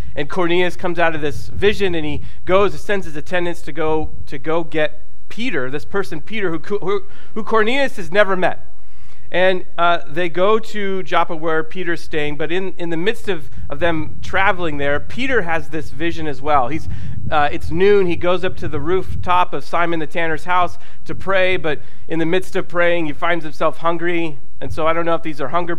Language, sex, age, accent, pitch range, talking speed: English, male, 30-49, American, 150-190 Hz, 210 wpm